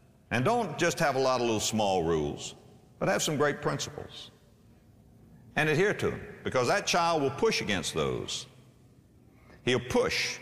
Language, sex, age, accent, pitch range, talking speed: English, male, 60-79, American, 135-220 Hz, 160 wpm